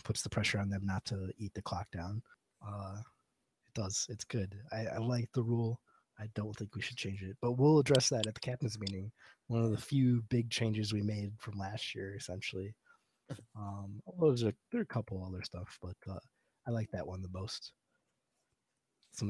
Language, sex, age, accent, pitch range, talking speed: English, male, 20-39, American, 100-125 Hz, 200 wpm